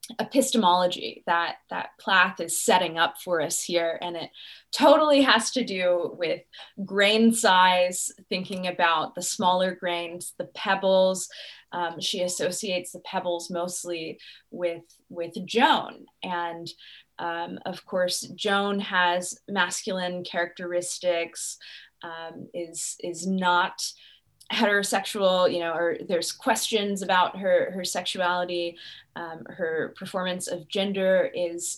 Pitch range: 175-205 Hz